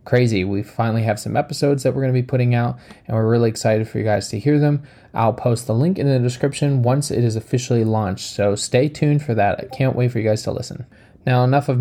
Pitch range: 110-140 Hz